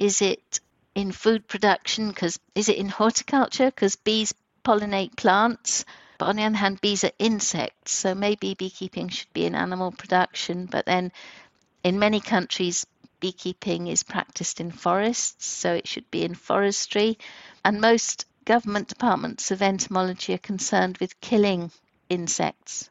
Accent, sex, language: British, female, English